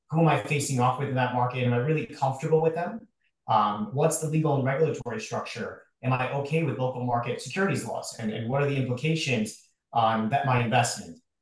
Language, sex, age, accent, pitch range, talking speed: English, male, 30-49, American, 130-160 Hz, 210 wpm